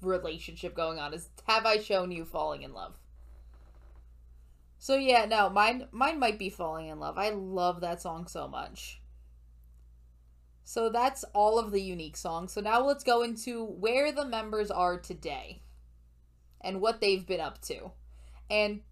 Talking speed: 160 wpm